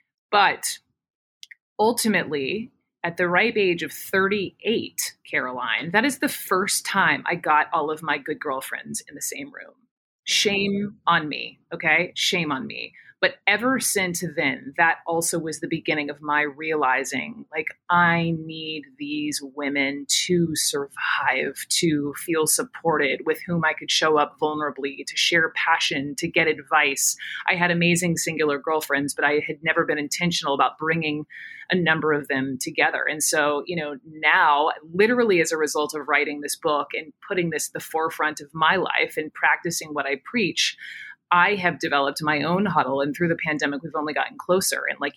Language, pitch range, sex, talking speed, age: English, 150-180 Hz, female, 170 wpm, 30-49